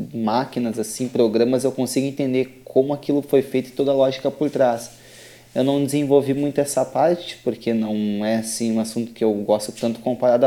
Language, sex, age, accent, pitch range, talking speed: Portuguese, male, 20-39, Brazilian, 115-130 Hz, 190 wpm